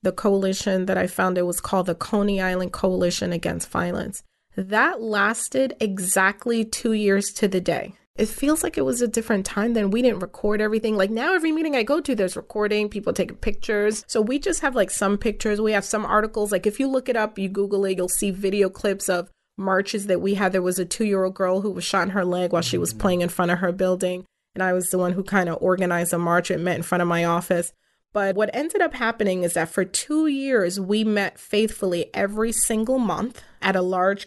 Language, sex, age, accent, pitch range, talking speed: English, female, 30-49, American, 185-220 Hz, 235 wpm